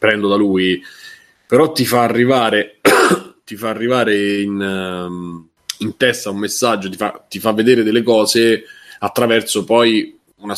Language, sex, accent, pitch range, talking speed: Italian, male, native, 95-110 Hz, 140 wpm